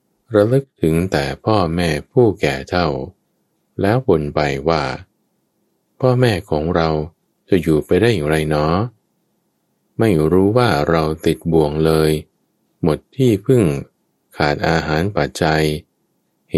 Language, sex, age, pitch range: Thai, male, 20-39, 75-100 Hz